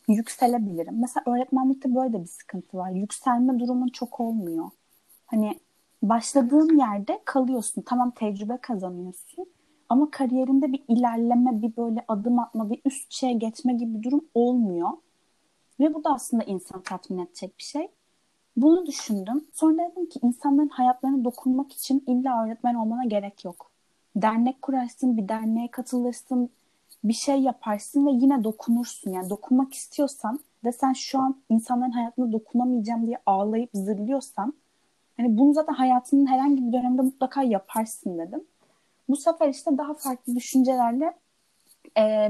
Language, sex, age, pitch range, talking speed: Turkish, female, 30-49, 215-265 Hz, 140 wpm